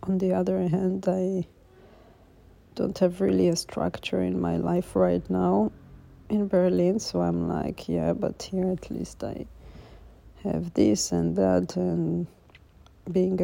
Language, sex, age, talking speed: English, female, 50-69, 145 wpm